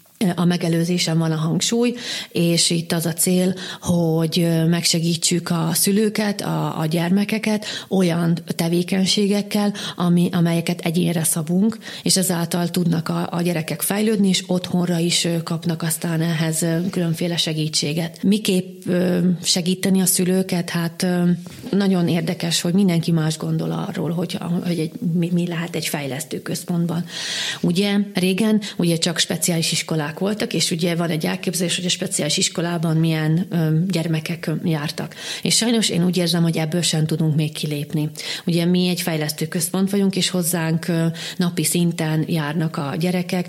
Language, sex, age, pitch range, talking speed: Hungarian, female, 30-49, 160-185 Hz, 145 wpm